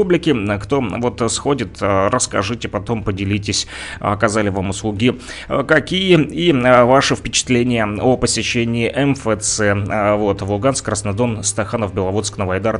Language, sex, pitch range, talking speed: Russian, male, 105-145 Hz, 115 wpm